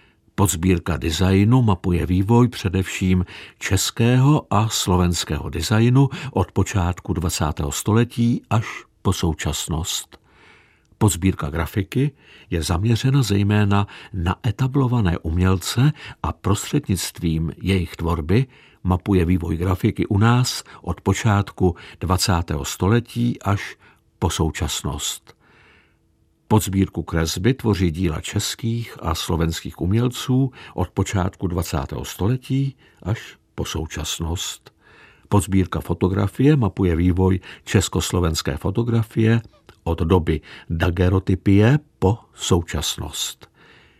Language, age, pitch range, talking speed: Czech, 60-79, 85-110 Hz, 90 wpm